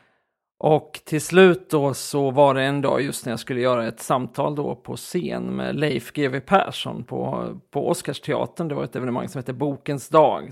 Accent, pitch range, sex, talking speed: native, 130-155 Hz, male, 195 wpm